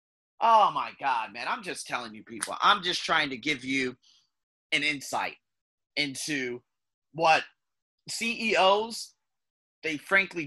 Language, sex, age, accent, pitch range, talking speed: English, male, 30-49, American, 130-190 Hz, 125 wpm